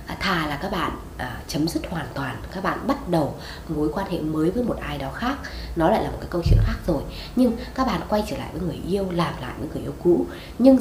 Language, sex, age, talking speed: Vietnamese, female, 20-39, 260 wpm